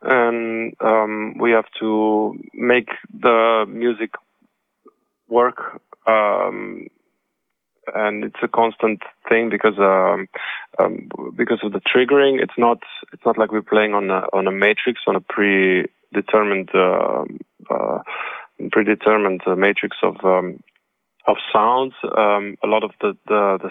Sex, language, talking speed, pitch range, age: male, Hungarian, 135 wpm, 100-115 Hz, 20-39